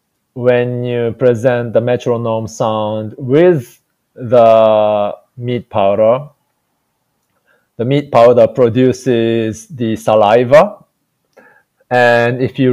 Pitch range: 105-125 Hz